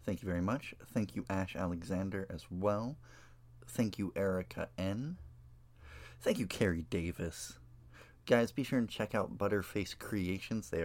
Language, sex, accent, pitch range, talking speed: English, male, American, 85-120 Hz, 150 wpm